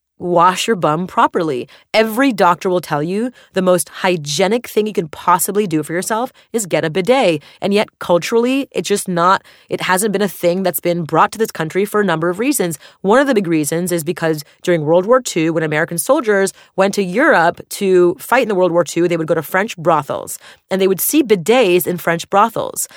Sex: female